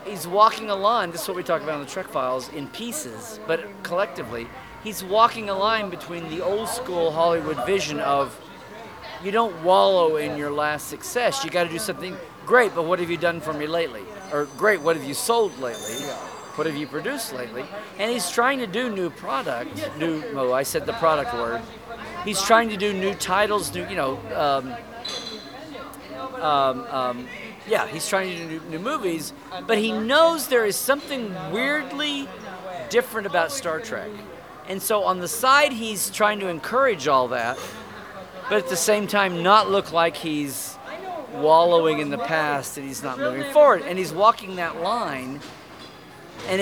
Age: 40-59